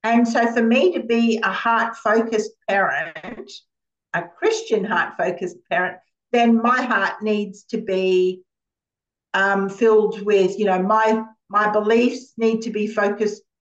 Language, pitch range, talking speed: English, 190-265 Hz, 135 wpm